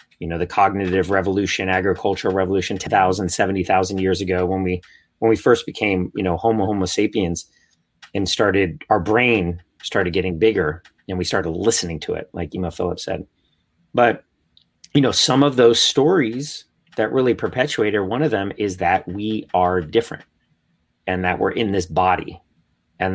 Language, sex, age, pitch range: English, male, 30-49, 90-115 Hz